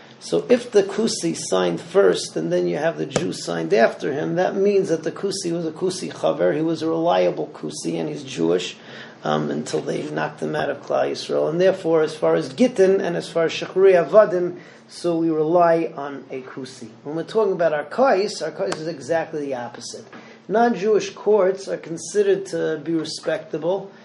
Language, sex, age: English, male, 40-59